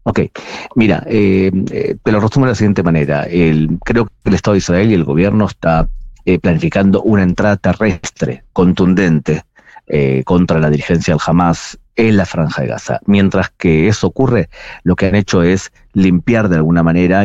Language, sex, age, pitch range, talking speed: Spanish, male, 40-59, 85-105 Hz, 170 wpm